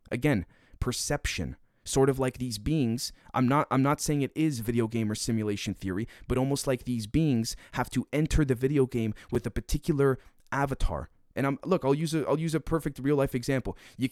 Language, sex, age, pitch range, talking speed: English, male, 30-49, 115-140 Hz, 200 wpm